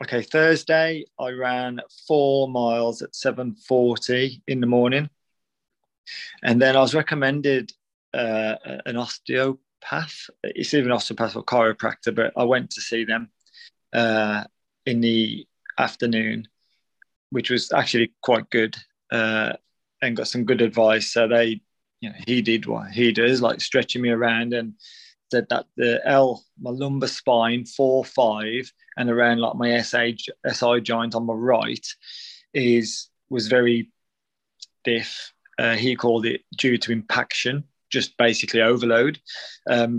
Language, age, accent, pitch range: English, 20-39, British, 115-135 Hz